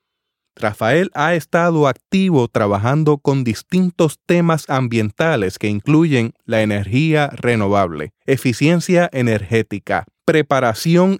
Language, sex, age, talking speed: Spanish, male, 30-49, 90 wpm